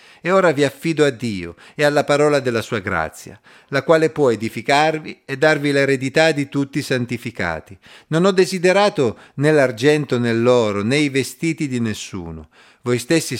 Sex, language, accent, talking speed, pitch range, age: male, Italian, native, 165 wpm, 110-145 Hz, 50-69